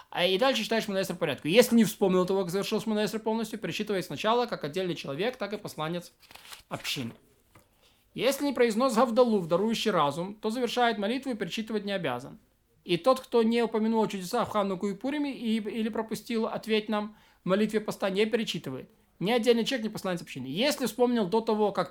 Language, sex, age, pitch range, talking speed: Russian, male, 20-39, 185-235 Hz, 175 wpm